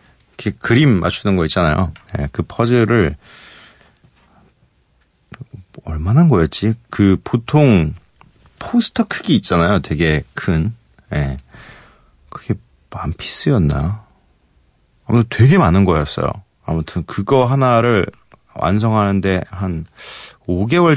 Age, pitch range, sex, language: 40-59, 85-130 Hz, male, Korean